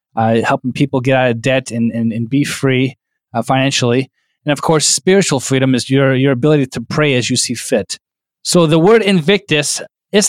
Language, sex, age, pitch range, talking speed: English, male, 20-39, 130-155 Hz, 200 wpm